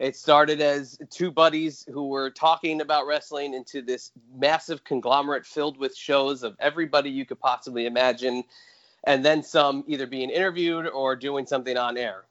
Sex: male